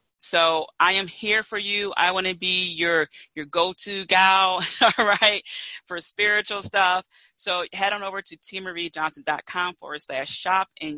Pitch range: 155-195 Hz